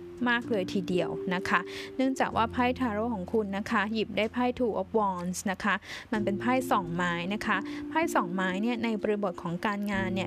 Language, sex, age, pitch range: Thai, female, 10-29, 200-245 Hz